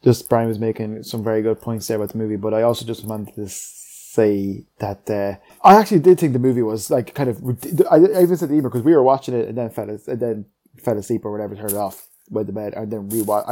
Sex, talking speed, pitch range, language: male, 265 wpm, 105-125 Hz, English